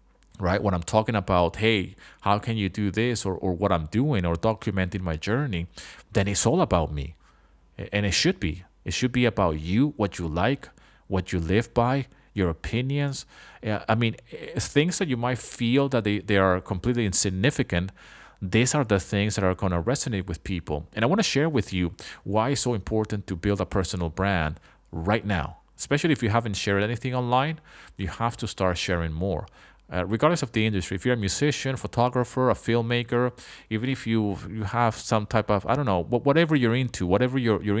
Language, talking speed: English, 200 wpm